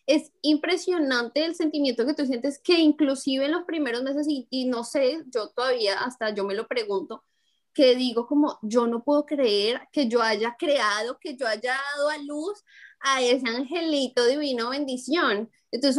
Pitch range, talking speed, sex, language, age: 235-300 Hz, 175 wpm, female, Spanish, 10-29